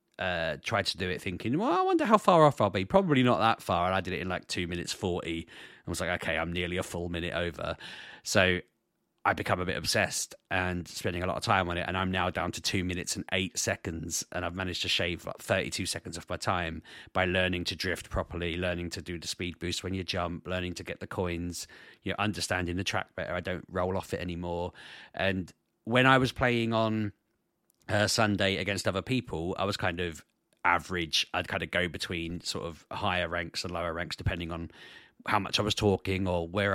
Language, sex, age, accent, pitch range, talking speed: English, male, 30-49, British, 90-105 Hz, 230 wpm